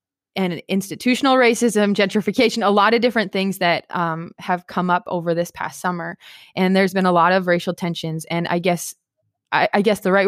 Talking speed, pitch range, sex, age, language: 200 wpm, 175-200 Hz, female, 20-39, English